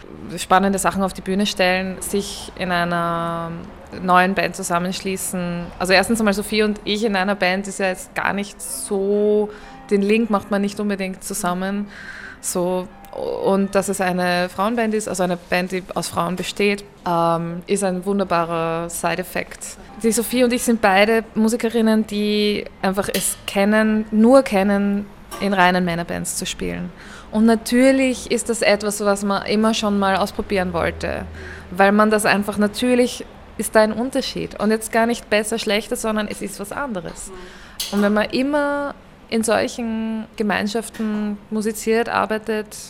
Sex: female